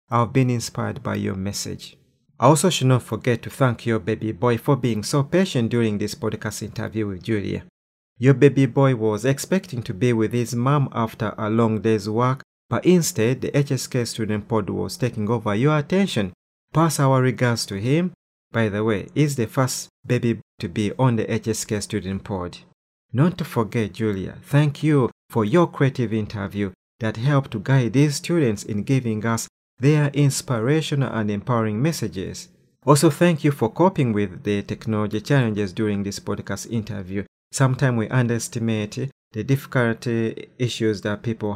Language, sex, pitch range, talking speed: English, male, 105-130 Hz, 170 wpm